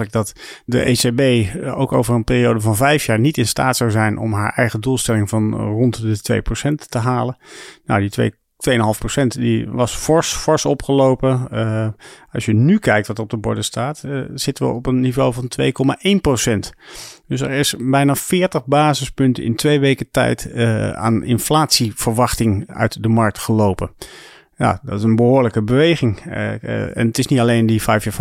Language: Dutch